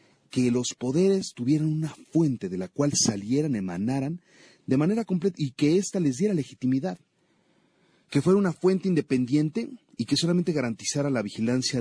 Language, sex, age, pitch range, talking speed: Spanish, male, 40-59, 105-155 Hz, 160 wpm